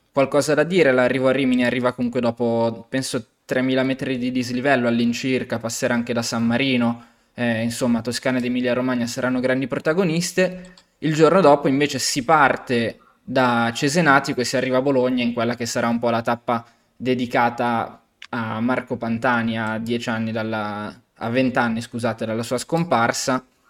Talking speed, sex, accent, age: 160 wpm, male, native, 20-39